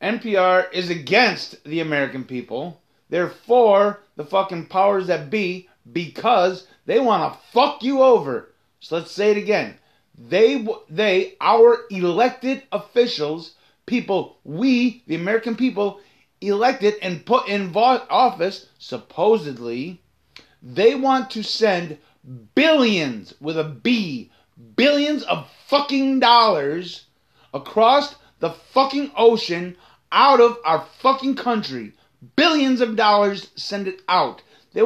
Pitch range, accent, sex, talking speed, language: 180-255 Hz, American, male, 120 wpm, English